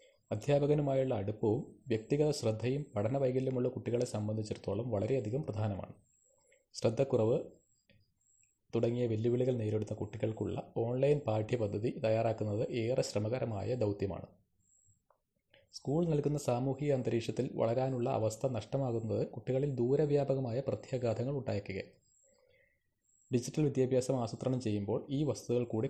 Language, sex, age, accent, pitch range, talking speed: Malayalam, male, 30-49, native, 110-135 Hz, 90 wpm